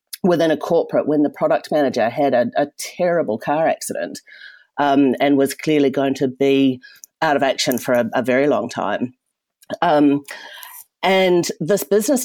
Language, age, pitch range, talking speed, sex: English, 40-59, 140-195 Hz, 160 wpm, female